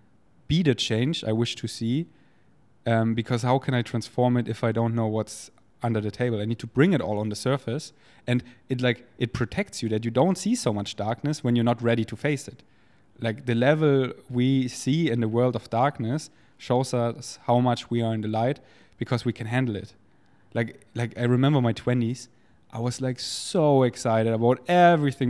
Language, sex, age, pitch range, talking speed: English, male, 20-39, 115-140 Hz, 205 wpm